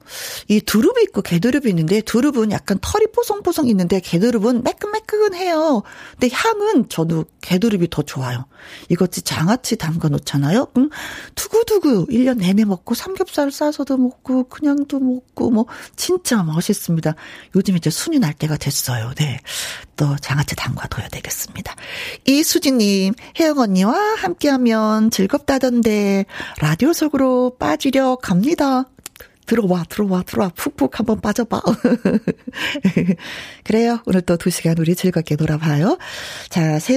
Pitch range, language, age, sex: 185-285 Hz, Korean, 40-59, female